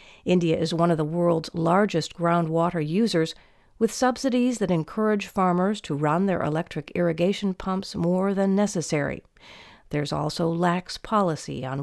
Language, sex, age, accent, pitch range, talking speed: English, female, 50-69, American, 165-215 Hz, 140 wpm